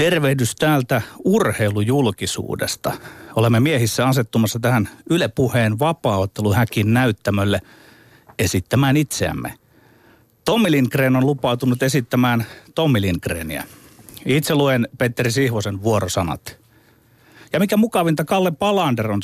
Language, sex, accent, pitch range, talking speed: Finnish, male, native, 105-135 Hz, 95 wpm